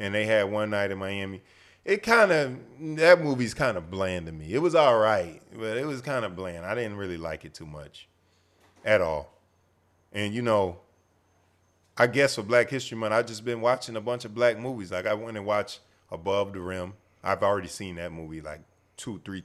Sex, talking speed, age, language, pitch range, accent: male, 215 wpm, 20-39, English, 85-105 Hz, American